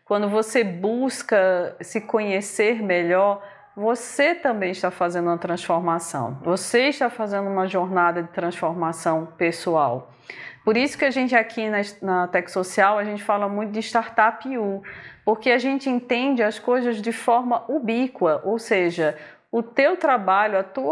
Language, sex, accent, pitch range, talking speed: Portuguese, female, Brazilian, 180-275 Hz, 150 wpm